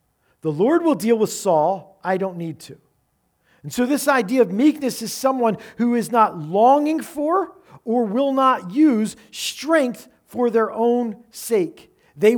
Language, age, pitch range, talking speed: English, 40-59, 180-245 Hz, 160 wpm